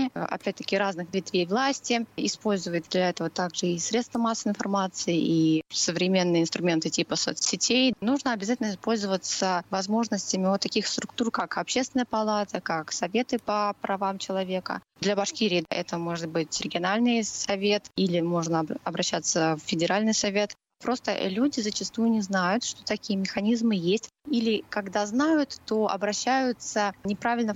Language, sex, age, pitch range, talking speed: Russian, female, 20-39, 190-225 Hz, 130 wpm